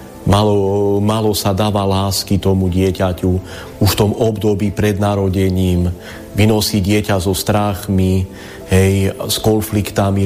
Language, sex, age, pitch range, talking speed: Slovak, male, 30-49, 95-105 Hz, 110 wpm